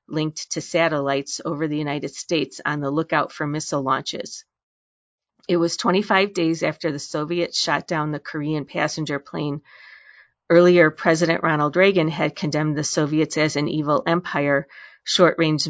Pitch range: 150-170 Hz